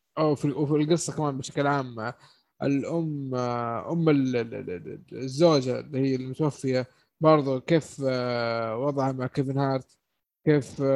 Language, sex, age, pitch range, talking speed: Arabic, male, 20-39, 135-170 Hz, 105 wpm